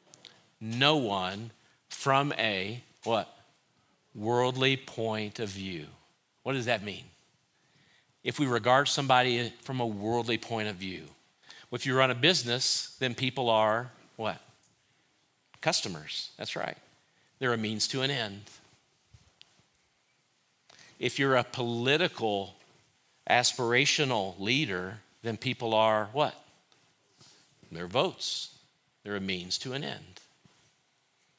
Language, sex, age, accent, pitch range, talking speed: English, male, 50-69, American, 105-130 Hz, 115 wpm